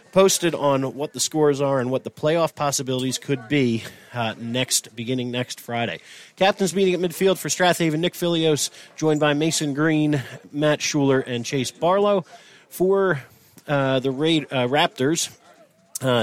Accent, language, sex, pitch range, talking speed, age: American, English, male, 120-150 Hz, 155 wpm, 40-59